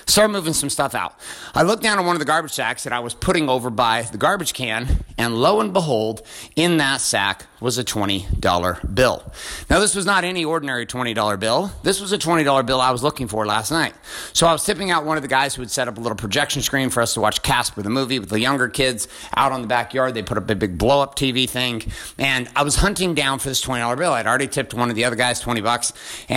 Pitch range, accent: 110-145 Hz, American